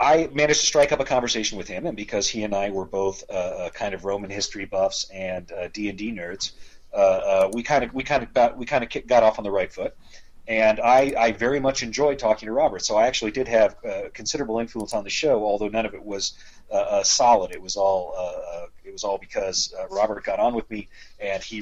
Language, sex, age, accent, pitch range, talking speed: English, male, 40-59, American, 100-125 Hz, 245 wpm